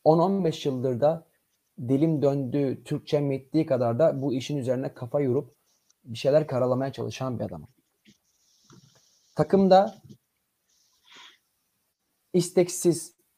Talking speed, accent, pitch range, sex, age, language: 100 wpm, native, 140-200 Hz, male, 30-49, Turkish